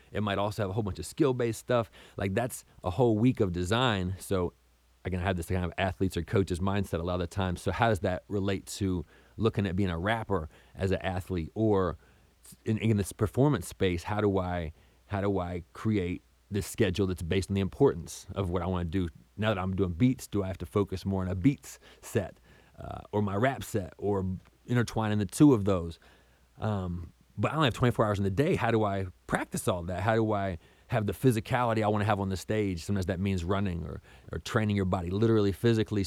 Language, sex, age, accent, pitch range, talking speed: English, male, 30-49, American, 95-110 Hz, 230 wpm